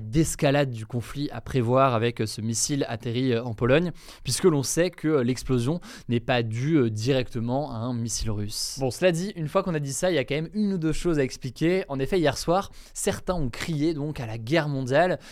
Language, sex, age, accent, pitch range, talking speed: French, male, 20-39, French, 125-165 Hz, 220 wpm